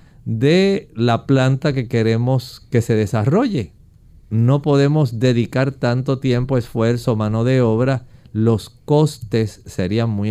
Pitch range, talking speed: 115-145 Hz, 120 wpm